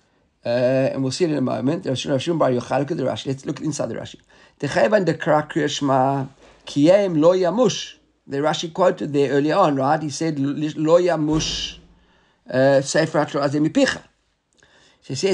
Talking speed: 155 wpm